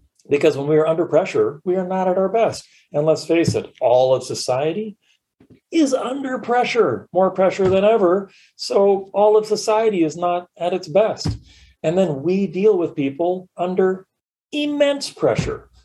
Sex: male